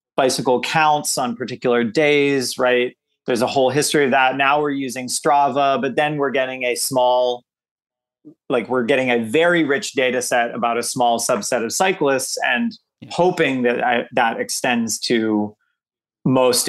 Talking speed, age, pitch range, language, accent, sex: 160 wpm, 30-49, 120-145 Hz, English, American, male